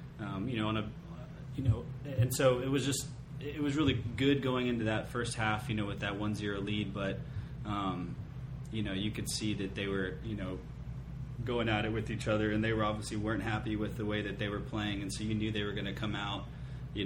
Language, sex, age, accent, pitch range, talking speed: English, male, 20-39, American, 100-125 Hz, 250 wpm